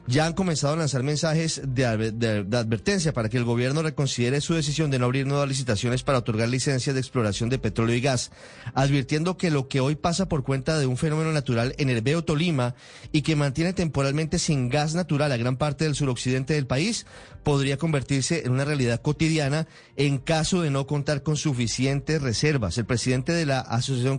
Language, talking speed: Spanish, 200 wpm